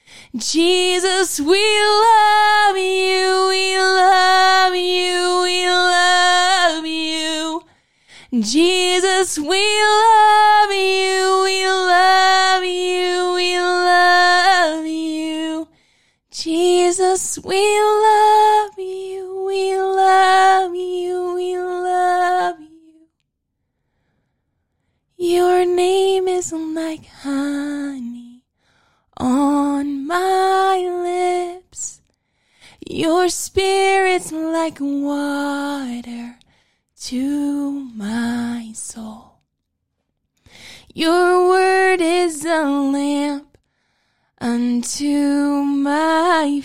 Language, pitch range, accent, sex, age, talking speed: English, 315-375 Hz, American, female, 20-39, 65 wpm